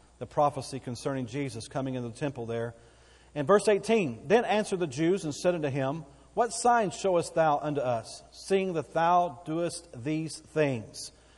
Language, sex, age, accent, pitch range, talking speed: English, male, 40-59, American, 130-175 Hz, 170 wpm